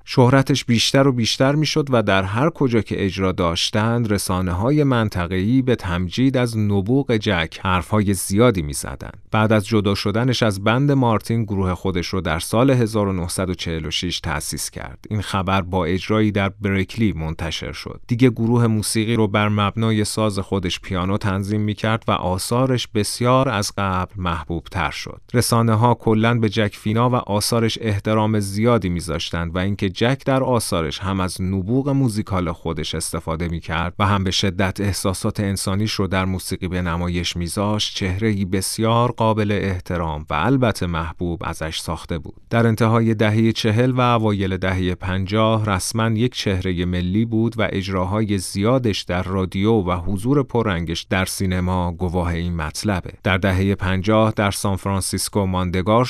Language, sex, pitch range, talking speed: Persian, male, 90-115 Hz, 155 wpm